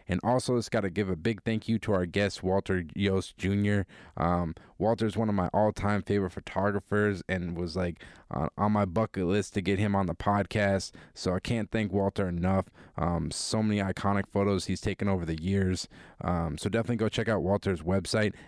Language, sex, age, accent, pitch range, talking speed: English, male, 20-39, American, 95-110 Hz, 200 wpm